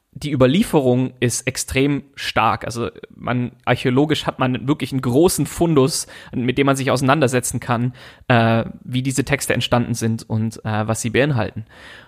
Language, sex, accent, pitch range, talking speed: German, male, German, 115-145 Hz, 155 wpm